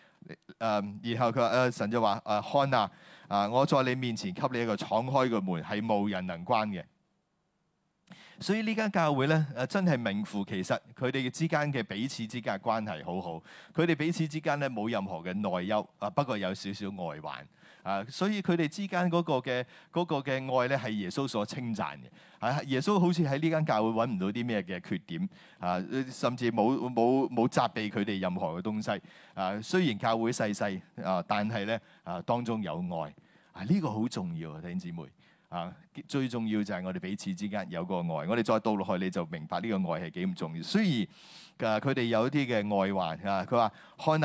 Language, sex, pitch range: Chinese, male, 105-155 Hz